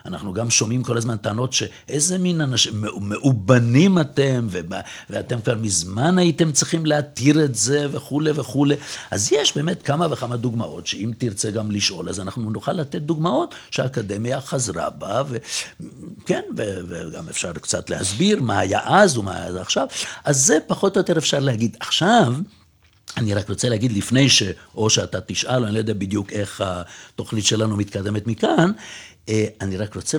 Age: 60-79